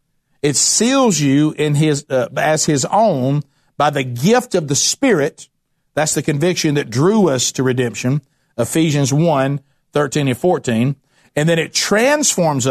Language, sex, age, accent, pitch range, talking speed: English, male, 50-69, American, 140-170 Hz, 145 wpm